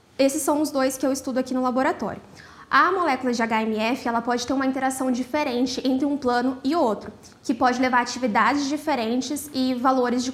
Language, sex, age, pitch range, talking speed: Portuguese, female, 20-39, 245-285 Hz, 190 wpm